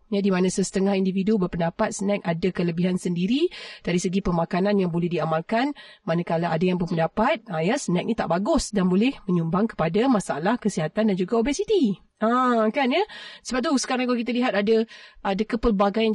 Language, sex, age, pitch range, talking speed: Malay, female, 30-49, 185-215 Hz, 165 wpm